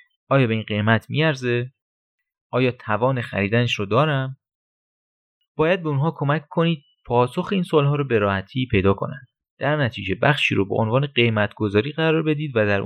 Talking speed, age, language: 160 wpm, 30-49, Persian